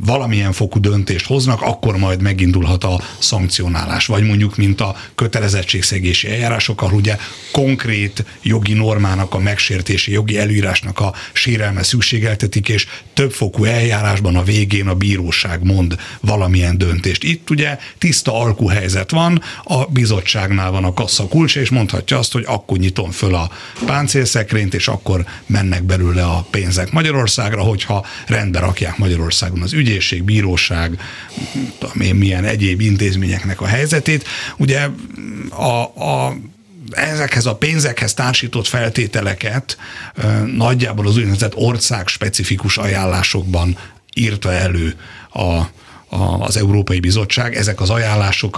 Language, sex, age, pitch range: Hungarian, male, 60-79, 95-115 Hz